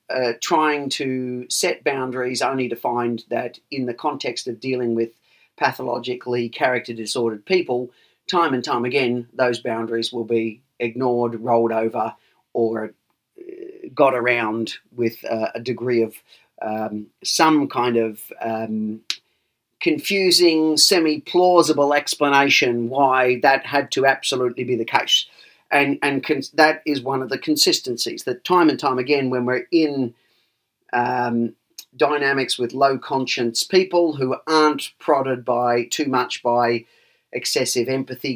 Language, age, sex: English, 40-59, male